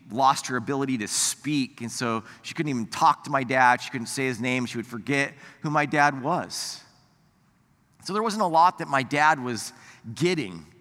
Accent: American